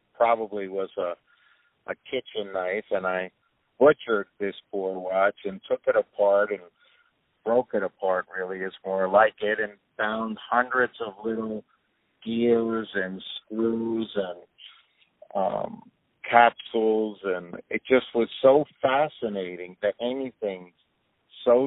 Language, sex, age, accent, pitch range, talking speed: English, male, 50-69, American, 100-120 Hz, 125 wpm